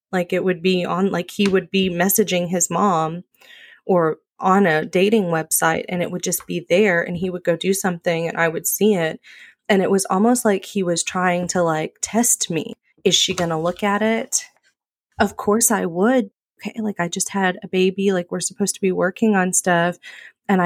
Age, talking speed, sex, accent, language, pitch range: 20-39, 210 wpm, female, American, English, 175-210 Hz